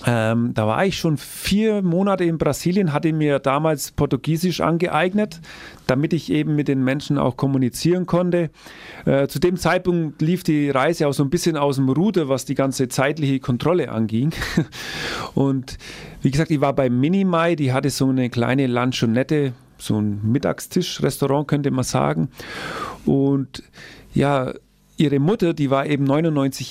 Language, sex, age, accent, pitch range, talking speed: German, male, 40-59, German, 130-160 Hz, 155 wpm